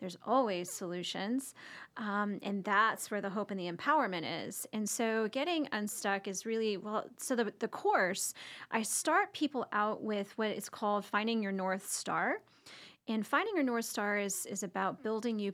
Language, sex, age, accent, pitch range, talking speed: English, female, 30-49, American, 205-265 Hz, 180 wpm